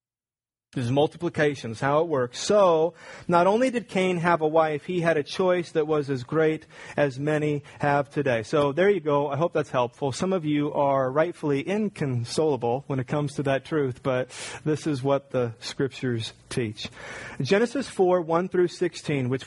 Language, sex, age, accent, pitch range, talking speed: English, male, 30-49, American, 130-155 Hz, 180 wpm